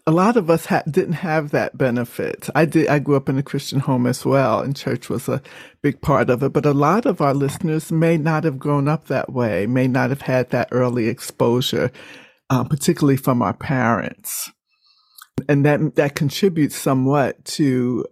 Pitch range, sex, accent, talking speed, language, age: 130-165 Hz, male, American, 195 wpm, English, 50-69